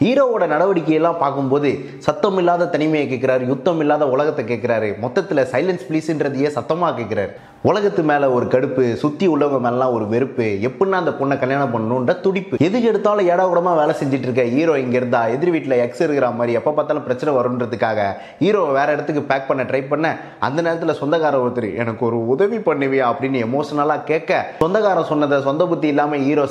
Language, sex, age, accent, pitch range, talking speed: Tamil, male, 20-39, native, 130-170 Hz, 165 wpm